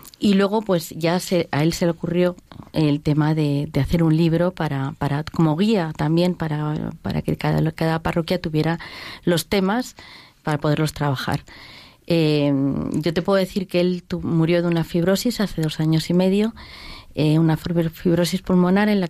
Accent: Spanish